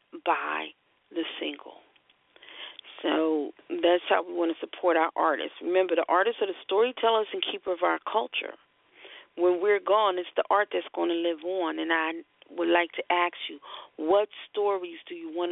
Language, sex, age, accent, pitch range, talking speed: English, female, 40-59, American, 170-225 Hz, 175 wpm